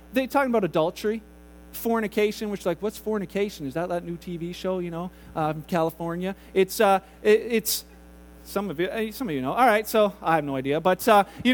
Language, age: English, 40-59